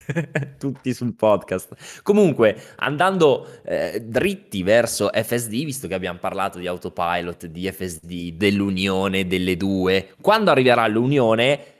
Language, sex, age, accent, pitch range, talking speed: Italian, male, 20-39, native, 95-125 Hz, 115 wpm